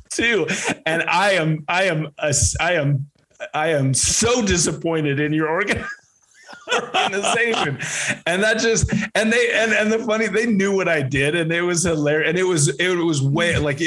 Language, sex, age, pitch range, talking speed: English, male, 30-49, 130-160 Hz, 175 wpm